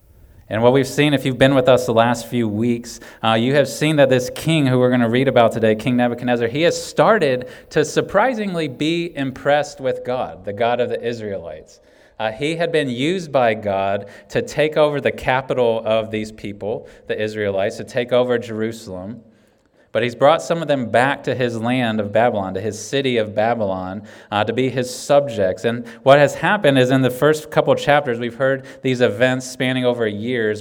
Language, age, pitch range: English, 30-49, 110-130 Hz